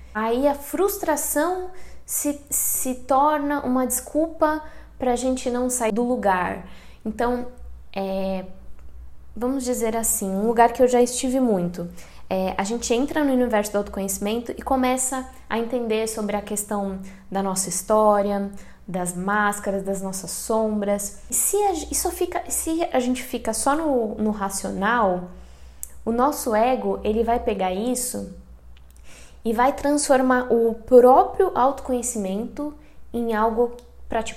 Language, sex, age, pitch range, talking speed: Portuguese, female, 10-29, 195-255 Hz, 140 wpm